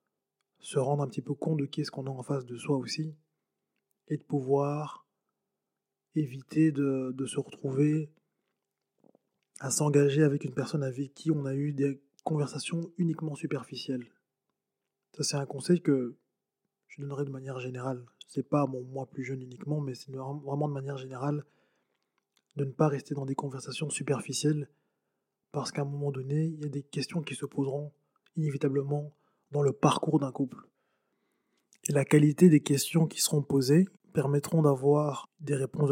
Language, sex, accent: French, male, French